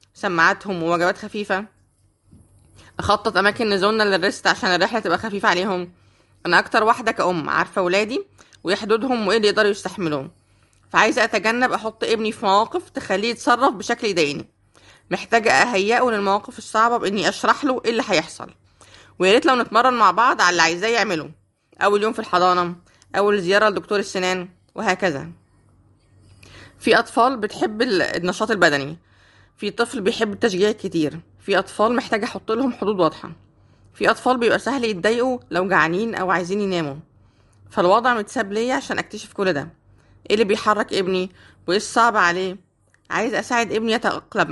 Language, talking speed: Arabic, 145 wpm